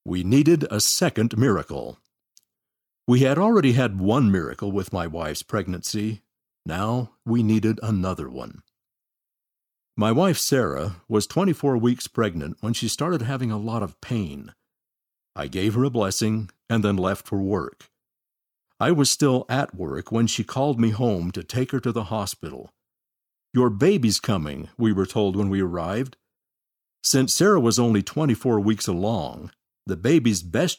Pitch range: 100-125 Hz